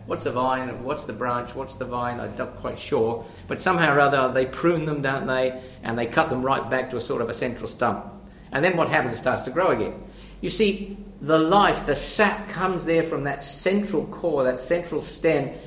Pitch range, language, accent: 160-210 Hz, English, British